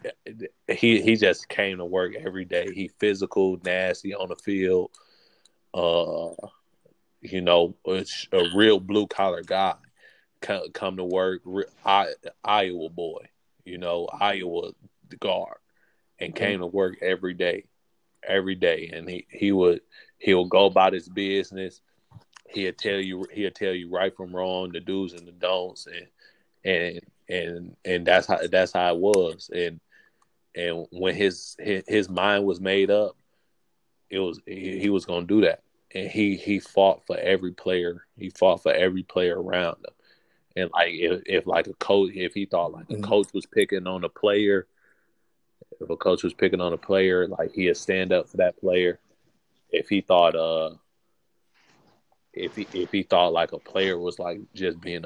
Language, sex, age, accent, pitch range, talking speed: English, male, 20-39, American, 90-100 Hz, 170 wpm